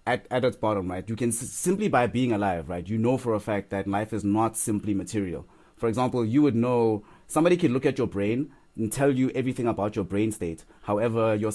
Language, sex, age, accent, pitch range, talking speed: English, male, 30-49, South African, 100-120 Hz, 235 wpm